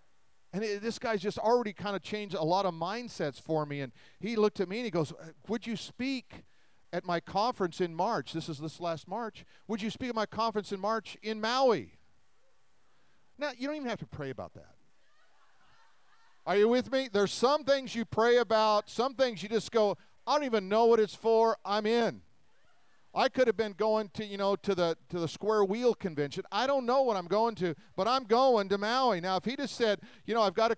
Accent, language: American, English